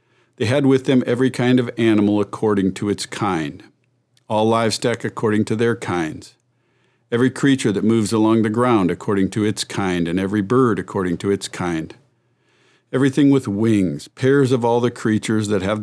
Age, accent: 50-69, American